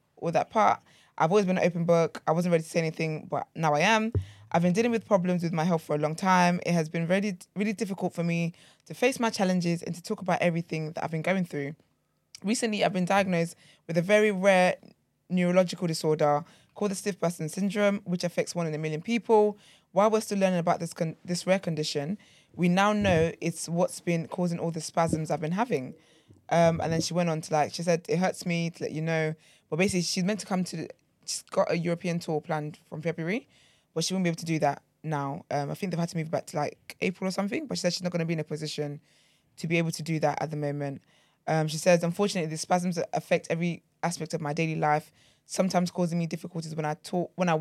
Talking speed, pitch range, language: 245 wpm, 155-180 Hz, English